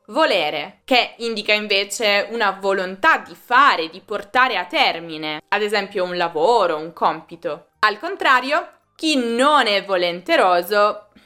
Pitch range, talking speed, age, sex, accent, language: 180-265 Hz, 130 wpm, 20-39, female, native, Italian